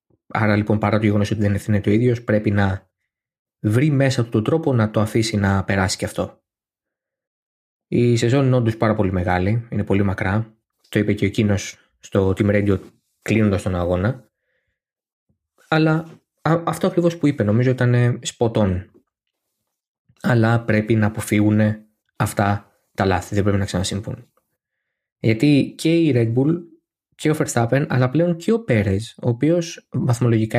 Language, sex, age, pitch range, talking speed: Greek, male, 20-39, 105-140 Hz, 155 wpm